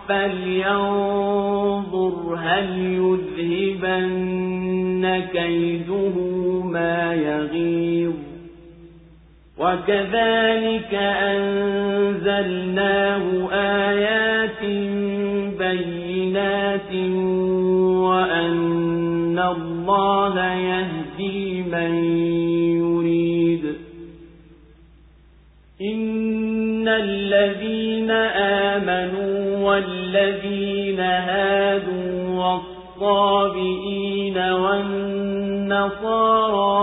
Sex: male